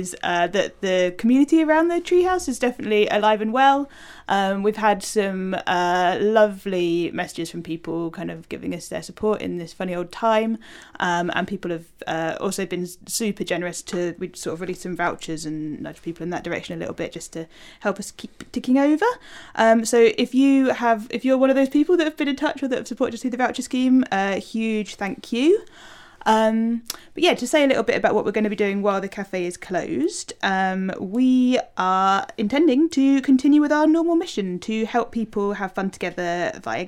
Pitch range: 185-245 Hz